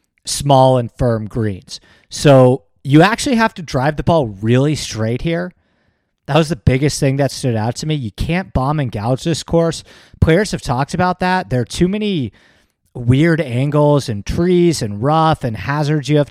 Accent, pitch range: American, 120-160 Hz